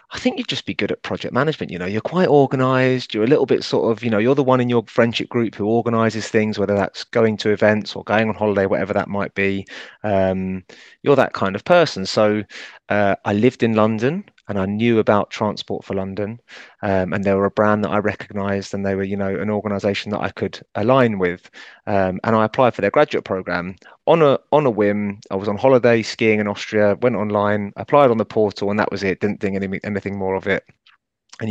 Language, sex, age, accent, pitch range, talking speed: English, male, 30-49, British, 100-120 Hz, 235 wpm